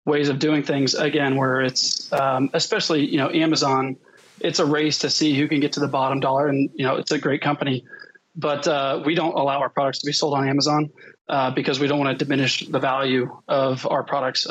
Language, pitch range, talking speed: English, 135-155 Hz, 230 wpm